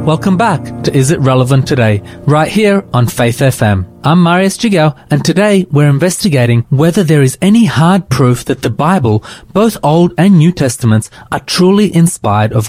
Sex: male